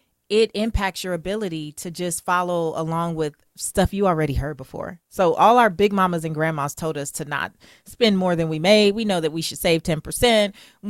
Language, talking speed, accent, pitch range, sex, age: English, 205 wpm, American, 160-190 Hz, female, 30-49